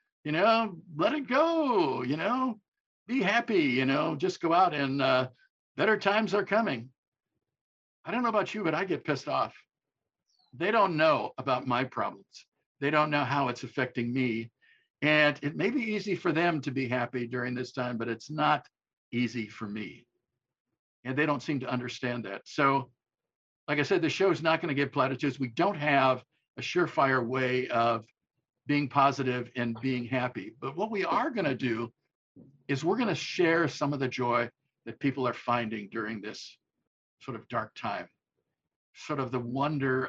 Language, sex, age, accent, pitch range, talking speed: English, male, 50-69, American, 120-150 Hz, 185 wpm